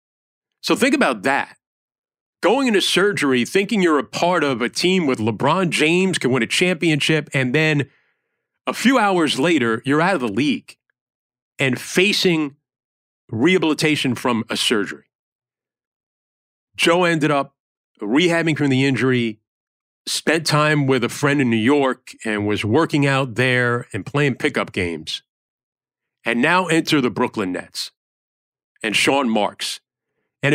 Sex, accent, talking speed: male, American, 140 wpm